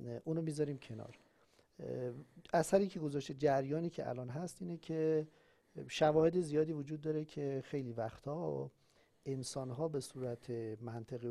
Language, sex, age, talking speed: Persian, male, 50-69, 135 wpm